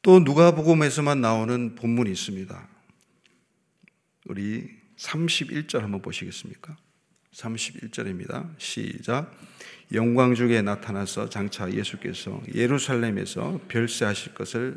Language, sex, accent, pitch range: Korean, male, native, 115-160 Hz